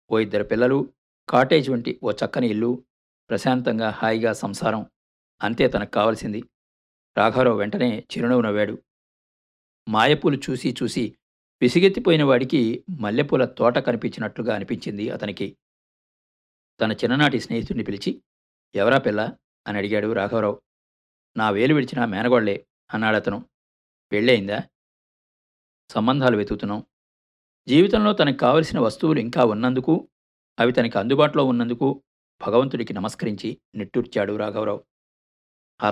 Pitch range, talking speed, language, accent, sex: 100-135 Hz, 100 wpm, Telugu, native, male